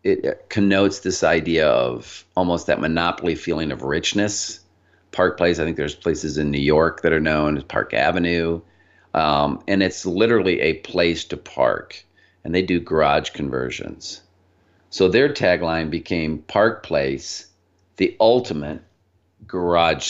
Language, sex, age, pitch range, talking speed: English, male, 50-69, 80-105 Hz, 145 wpm